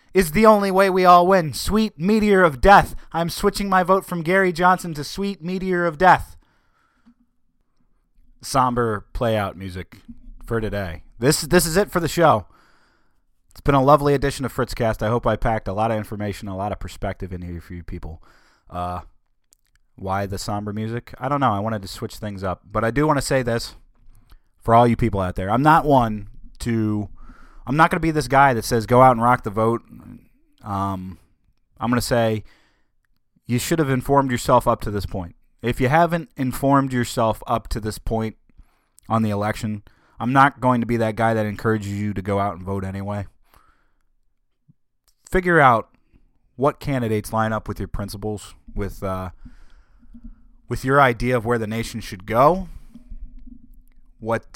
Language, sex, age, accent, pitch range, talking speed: English, male, 30-49, American, 100-145 Hz, 185 wpm